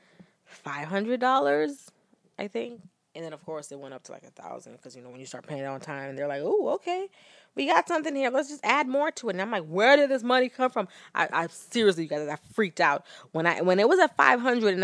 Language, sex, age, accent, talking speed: English, female, 20-39, American, 270 wpm